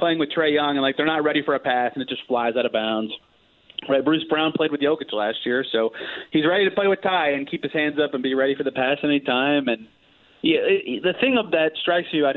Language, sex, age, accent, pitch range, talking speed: English, male, 30-49, American, 140-180 Hz, 265 wpm